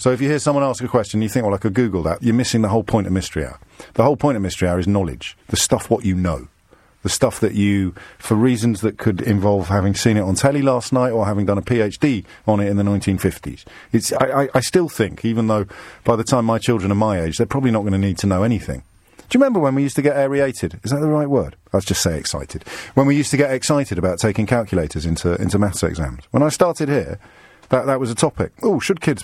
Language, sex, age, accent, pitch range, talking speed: English, male, 50-69, British, 95-130 Hz, 270 wpm